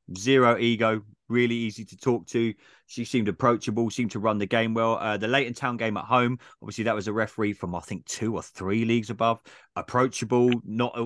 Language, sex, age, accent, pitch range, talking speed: English, male, 30-49, British, 105-130 Hz, 205 wpm